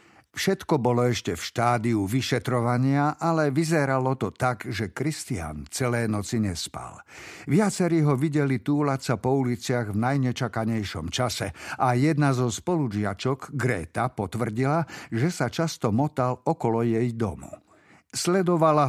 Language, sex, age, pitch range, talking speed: Slovak, male, 50-69, 115-150 Hz, 125 wpm